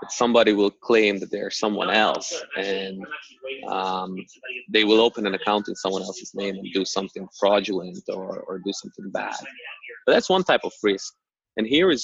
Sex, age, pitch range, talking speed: male, 20-39, 95-110 Hz, 180 wpm